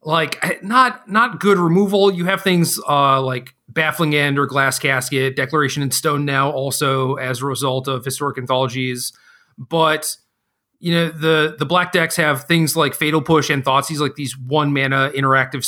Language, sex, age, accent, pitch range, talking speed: English, male, 40-59, American, 130-155 Hz, 170 wpm